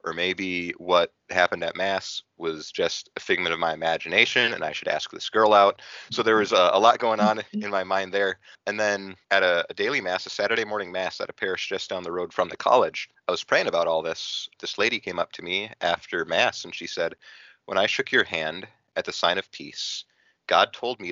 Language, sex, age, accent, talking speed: English, male, 30-49, American, 235 wpm